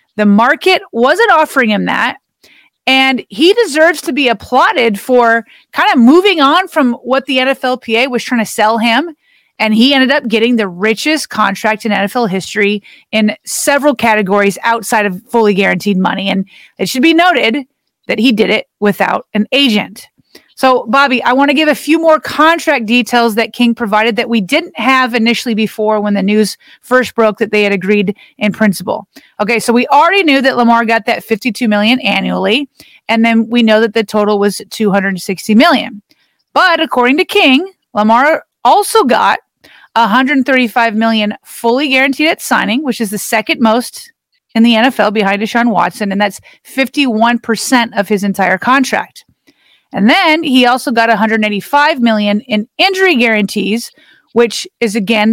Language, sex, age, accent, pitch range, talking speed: English, female, 30-49, American, 215-270 Hz, 165 wpm